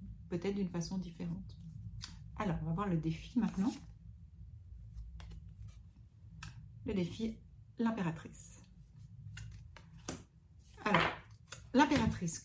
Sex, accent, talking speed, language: female, French, 75 wpm, French